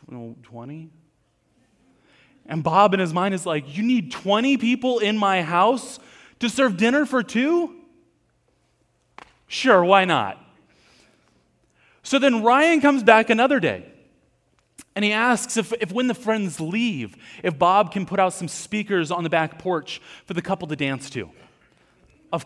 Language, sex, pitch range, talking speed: English, male, 150-220 Hz, 155 wpm